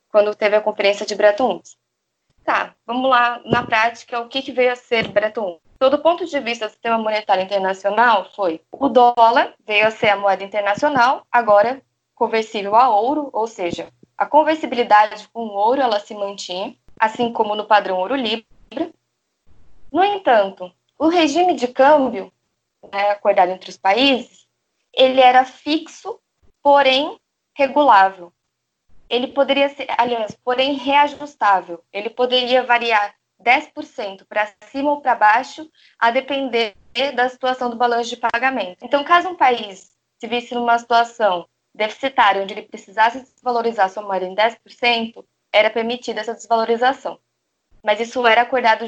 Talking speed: 150 wpm